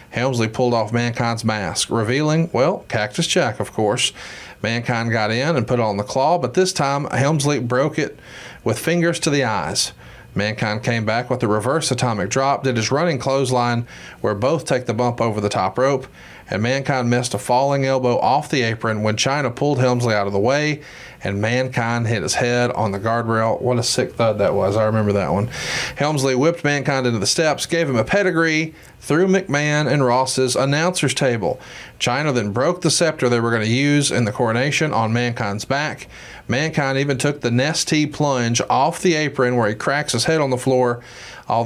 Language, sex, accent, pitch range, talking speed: English, male, American, 120-145 Hz, 195 wpm